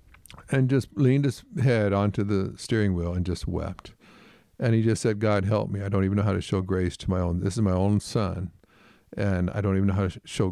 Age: 50-69